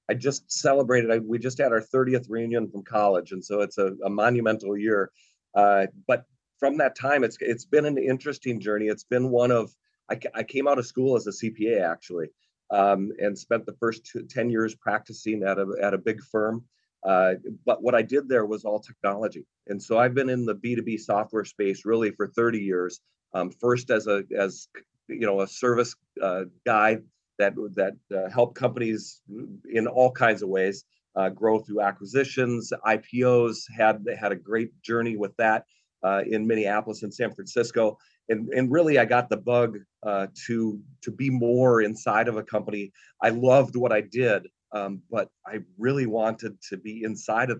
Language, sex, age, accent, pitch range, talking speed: English, male, 40-59, American, 105-120 Hz, 190 wpm